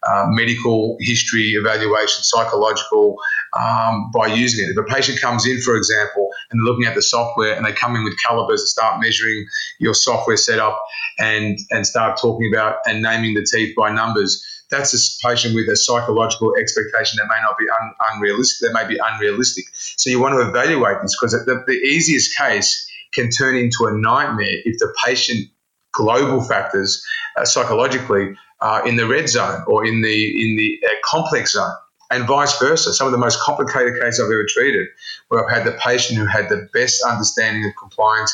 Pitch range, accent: 110-135 Hz, Australian